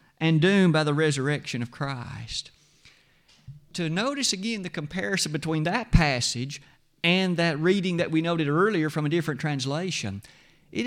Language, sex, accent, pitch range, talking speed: English, male, American, 145-190 Hz, 150 wpm